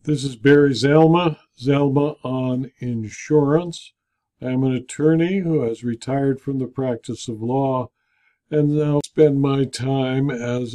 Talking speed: 135 wpm